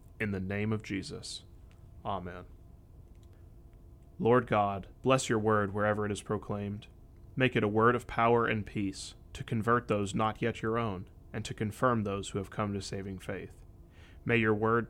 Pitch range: 90-110 Hz